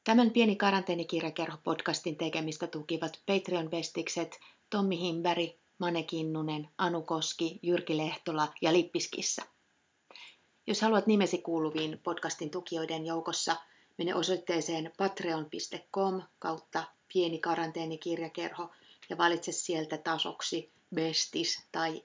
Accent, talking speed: native, 95 wpm